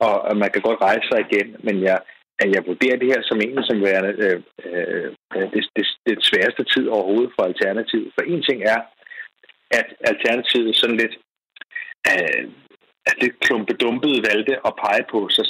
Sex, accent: male, native